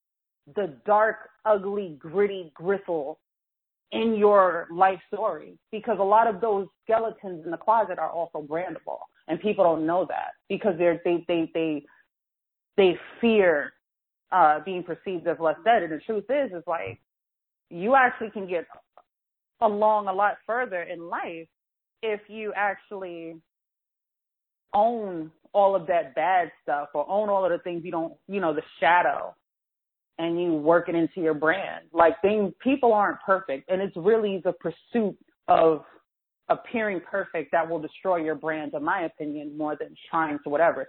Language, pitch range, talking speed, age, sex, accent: English, 160-205 Hz, 160 wpm, 30-49, female, American